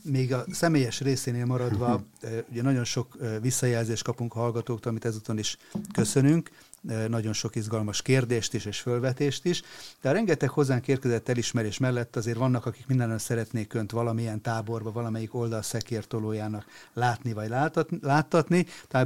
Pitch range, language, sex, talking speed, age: 115-130 Hz, Hungarian, male, 140 wpm, 30-49